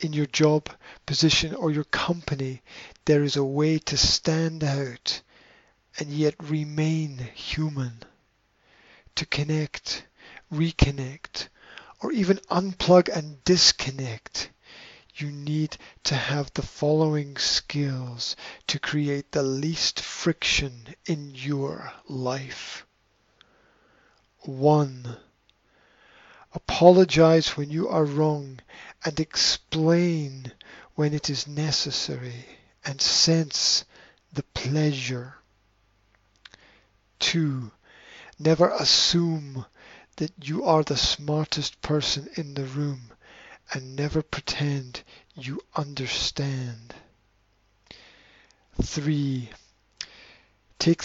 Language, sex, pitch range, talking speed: English, male, 130-155 Hz, 90 wpm